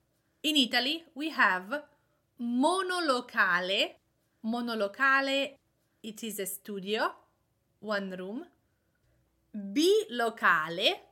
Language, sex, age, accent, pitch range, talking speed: English, female, 30-49, Italian, 205-300 Hz, 70 wpm